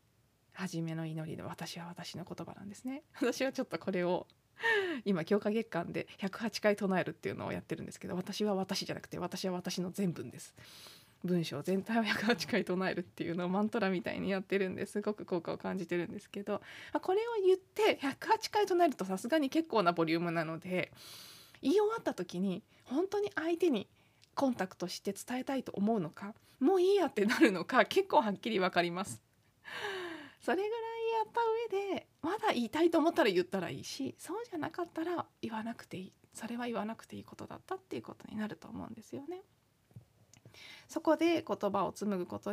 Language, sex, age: Japanese, female, 20-39